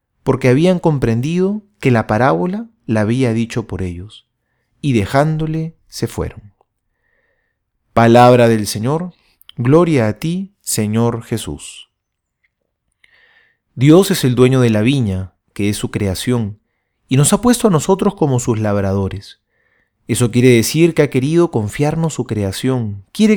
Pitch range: 105-160 Hz